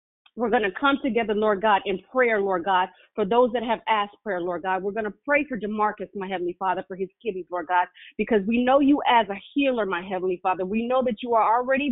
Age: 30-49